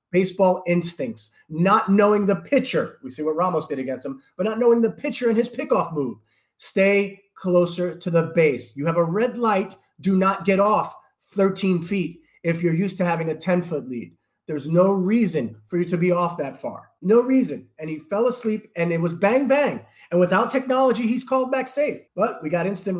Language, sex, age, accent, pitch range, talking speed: English, male, 30-49, American, 150-200 Hz, 205 wpm